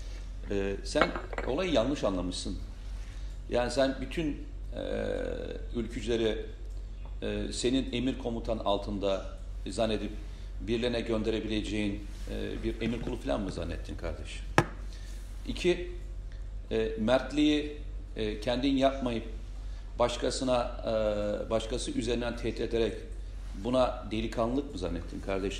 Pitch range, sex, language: 95-120 Hz, male, Turkish